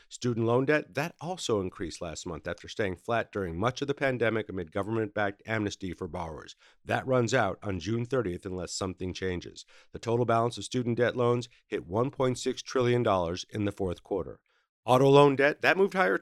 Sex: male